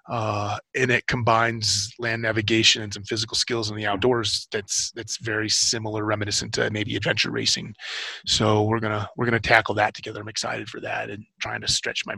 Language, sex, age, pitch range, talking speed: English, male, 30-49, 105-115 Hz, 200 wpm